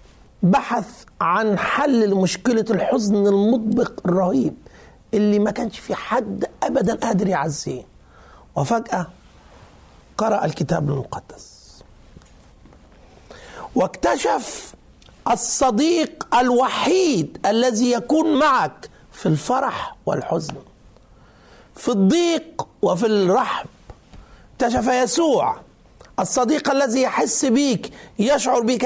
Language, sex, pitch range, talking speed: Arabic, male, 175-240 Hz, 85 wpm